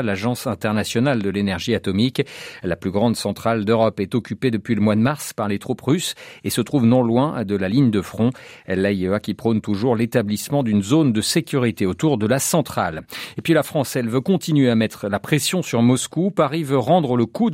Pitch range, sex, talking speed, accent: 110-150 Hz, male, 210 wpm, French